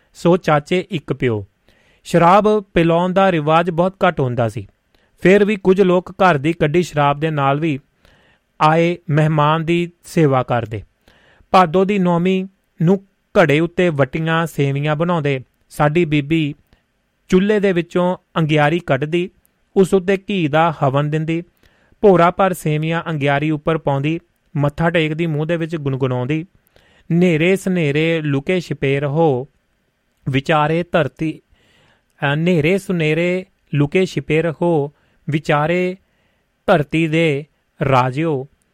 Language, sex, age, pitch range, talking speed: Punjabi, male, 30-49, 145-175 Hz, 105 wpm